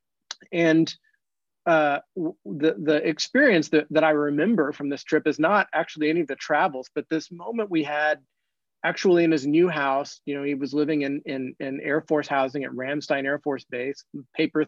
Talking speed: 190 wpm